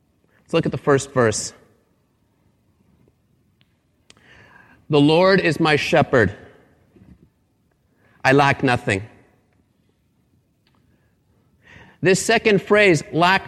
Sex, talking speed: male, 75 wpm